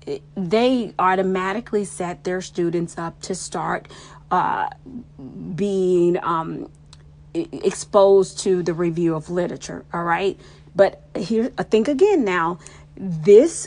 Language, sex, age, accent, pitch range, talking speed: English, female, 40-59, American, 180-235 Hz, 115 wpm